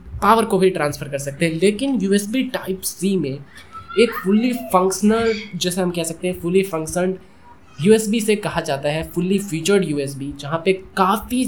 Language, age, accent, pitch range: Hindi, 20-39, native, 155-205 Hz